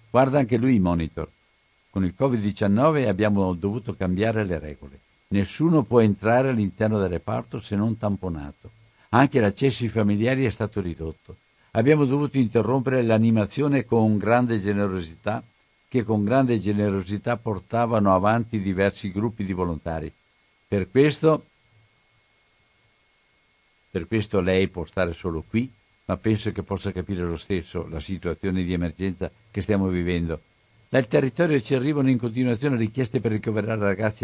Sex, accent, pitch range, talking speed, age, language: male, native, 95-120 Hz, 135 wpm, 60-79, Italian